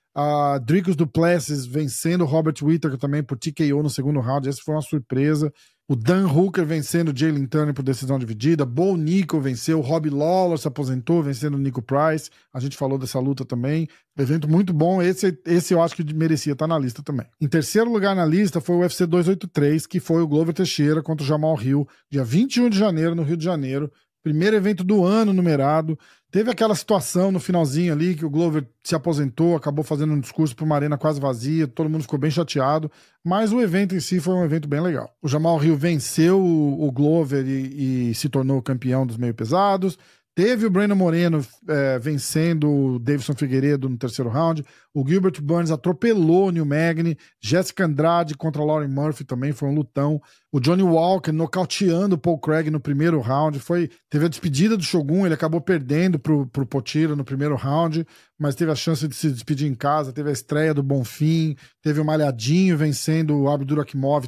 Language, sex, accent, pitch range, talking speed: Portuguese, male, Brazilian, 145-170 Hz, 195 wpm